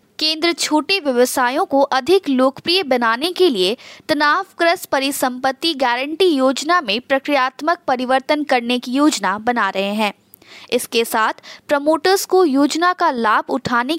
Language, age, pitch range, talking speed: Hindi, 20-39, 255-340 Hz, 130 wpm